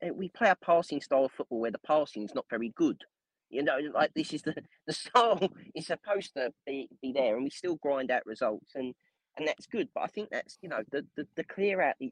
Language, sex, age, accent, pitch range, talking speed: English, male, 30-49, British, 130-185 Hz, 250 wpm